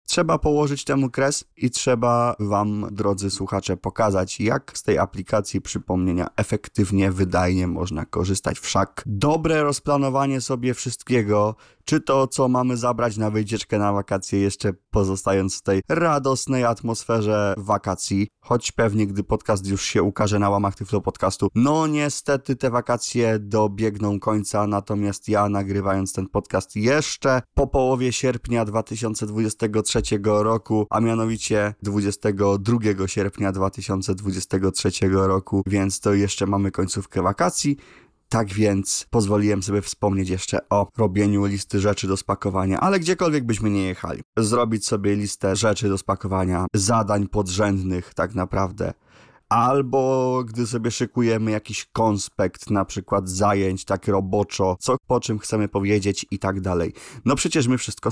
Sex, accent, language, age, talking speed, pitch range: male, native, Polish, 20-39, 135 wpm, 100-120 Hz